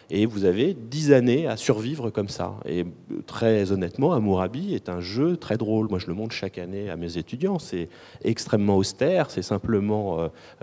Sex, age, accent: male, 30-49, French